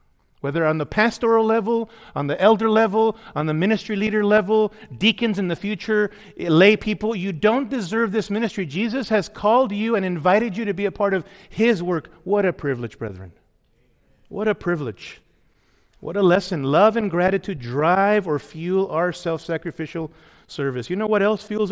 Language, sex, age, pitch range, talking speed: English, male, 50-69, 165-220 Hz, 175 wpm